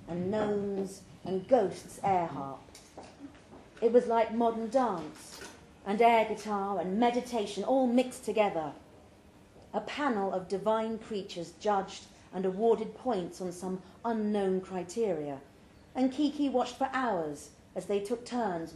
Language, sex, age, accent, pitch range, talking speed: English, female, 40-59, British, 160-240 Hz, 130 wpm